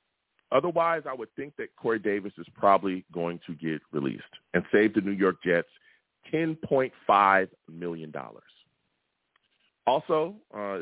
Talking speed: 130 wpm